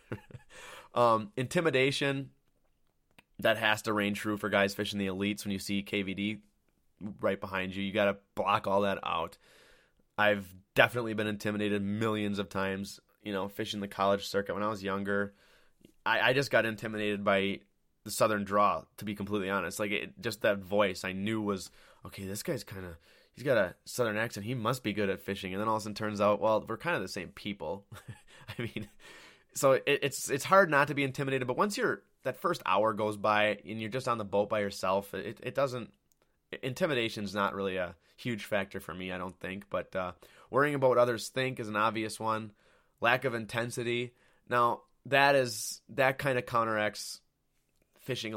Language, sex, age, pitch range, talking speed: English, male, 20-39, 100-120 Hz, 190 wpm